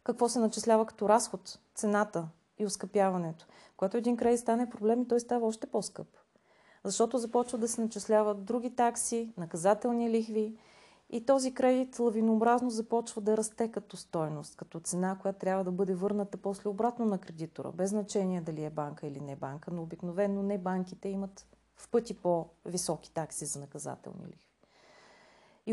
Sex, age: female, 30-49